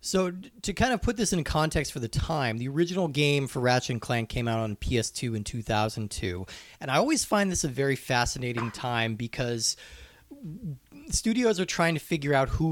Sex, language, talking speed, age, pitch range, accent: male, English, 190 wpm, 30-49, 115-155 Hz, American